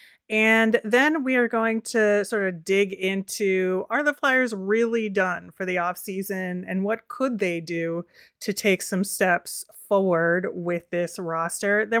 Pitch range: 180-225 Hz